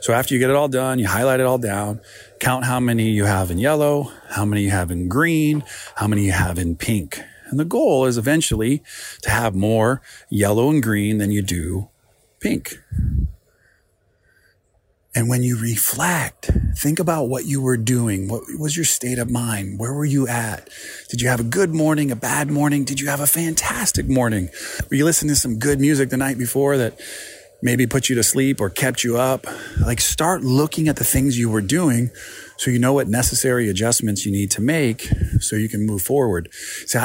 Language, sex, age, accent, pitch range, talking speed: English, male, 40-59, American, 105-135 Hz, 205 wpm